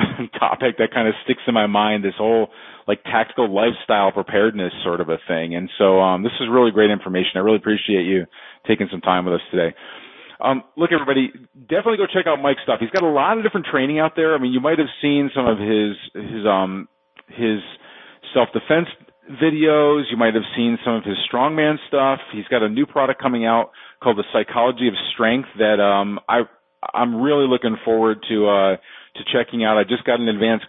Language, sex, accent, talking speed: English, male, American, 210 wpm